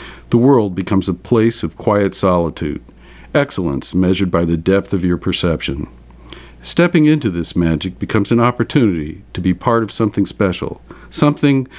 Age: 50-69